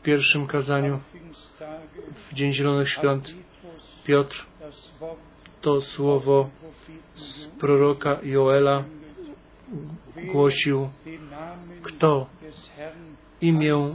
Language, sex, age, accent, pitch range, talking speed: Polish, male, 40-59, native, 150-185 Hz, 70 wpm